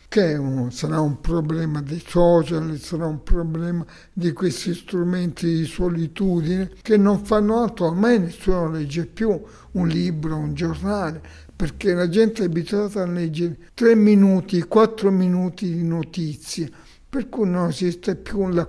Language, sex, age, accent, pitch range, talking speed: Italian, male, 60-79, native, 160-190 Hz, 145 wpm